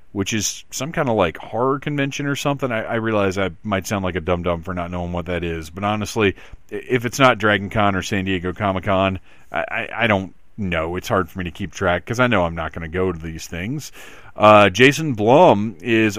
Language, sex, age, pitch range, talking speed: English, male, 40-59, 95-125 Hz, 235 wpm